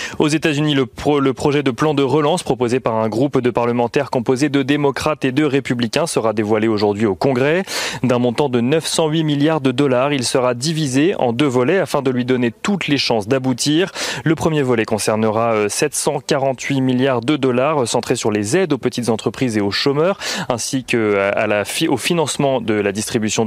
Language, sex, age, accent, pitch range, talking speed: French, male, 30-49, French, 120-150 Hz, 190 wpm